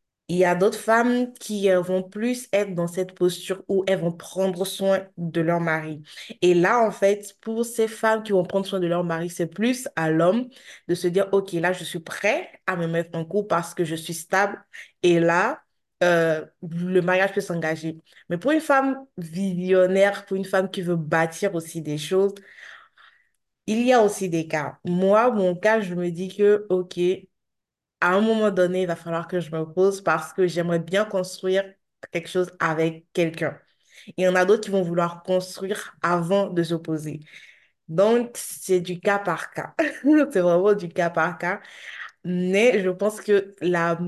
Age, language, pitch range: 20-39, French, 165-195 Hz